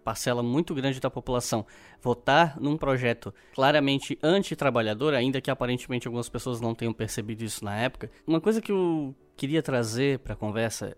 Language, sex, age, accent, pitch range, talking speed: Portuguese, male, 10-29, Brazilian, 125-160 Hz, 160 wpm